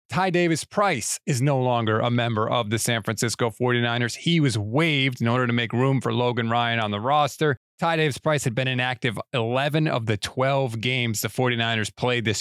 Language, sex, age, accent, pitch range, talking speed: English, male, 30-49, American, 115-145 Hz, 195 wpm